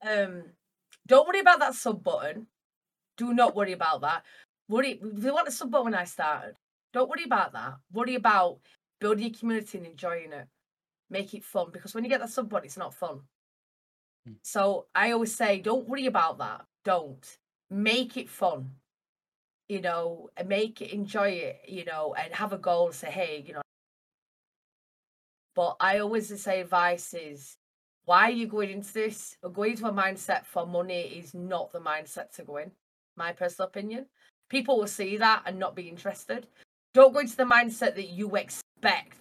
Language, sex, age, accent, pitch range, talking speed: English, female, 20-39, British, 170-225 Hz, 185 wpm